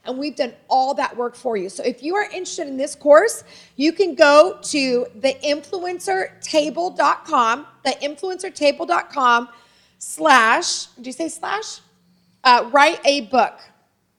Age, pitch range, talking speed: 30-49, 245-315 Hz, 130 wpm